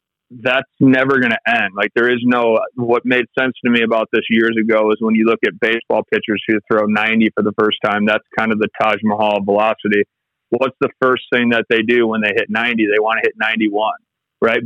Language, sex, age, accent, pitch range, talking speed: English, male, 30-49, American, 110-125 Hz, 230 wpm